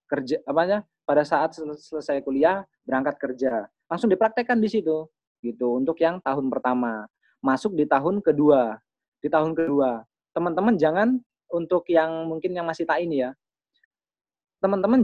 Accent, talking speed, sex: native, 140 wpm, male